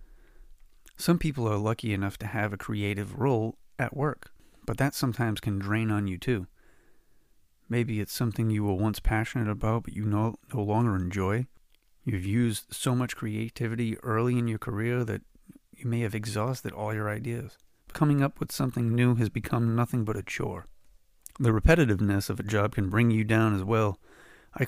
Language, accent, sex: English, American, male